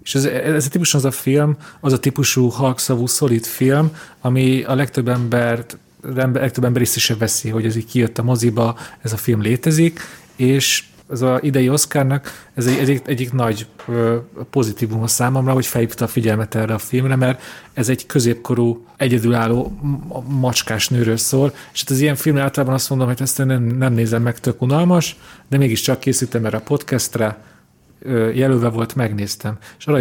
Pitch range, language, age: 120-140 Hz, Hungarian, 30-49